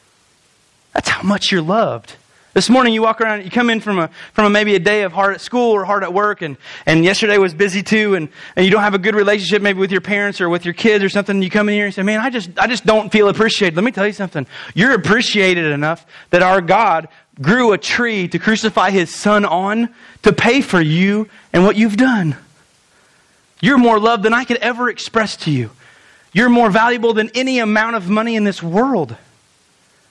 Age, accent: 30-49, American